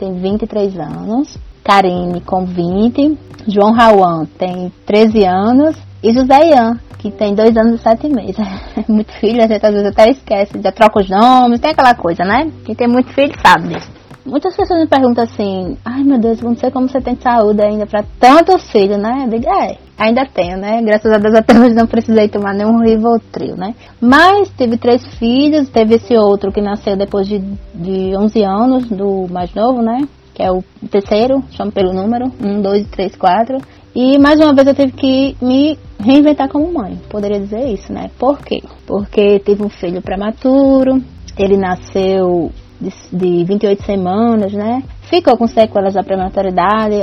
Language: Portuguese